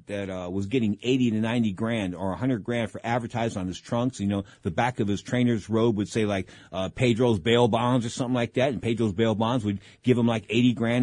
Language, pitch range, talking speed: English, 105-130 Hz, 245 wpm